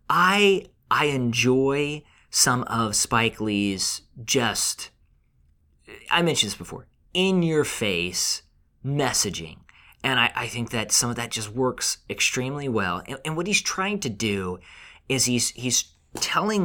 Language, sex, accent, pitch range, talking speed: English, male, American, 100-135 Hz, 125 wpm